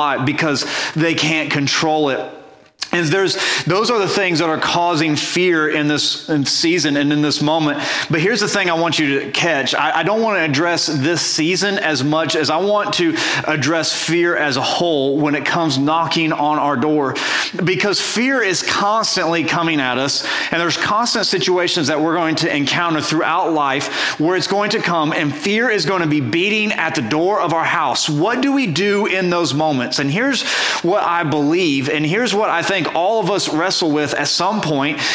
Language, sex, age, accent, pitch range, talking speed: English, male, 30-49, American, 145-185 Hz, 200 wpm